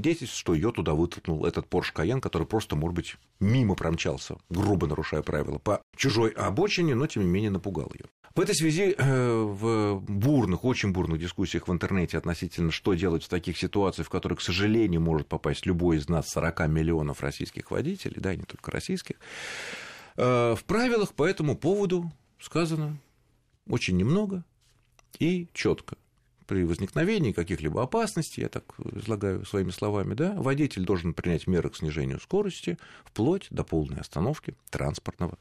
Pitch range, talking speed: 85-135 Hz, 155 wpm